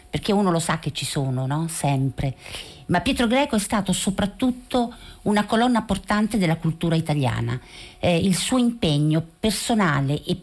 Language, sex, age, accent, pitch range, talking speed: Italian, female, 50-69, native, 155-205 Hz, 150 wpm